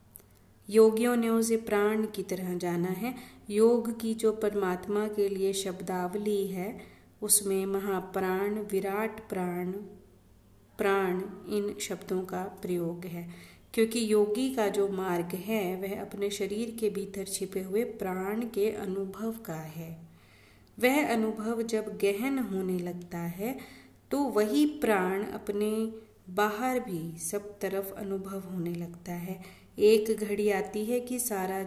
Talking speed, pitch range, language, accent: 130 wpm, 175-215 Hz, Hindi, native